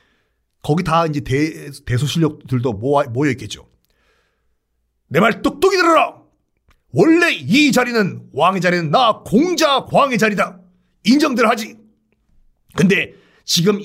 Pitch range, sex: 145-205 Hz, male